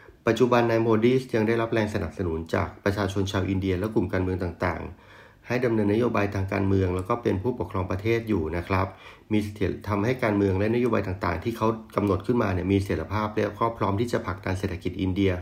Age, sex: 30-49, male